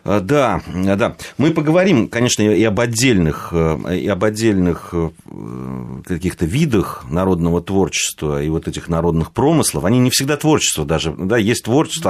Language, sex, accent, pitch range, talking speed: Russian, male, native, 80-100 Hz, 140 wpm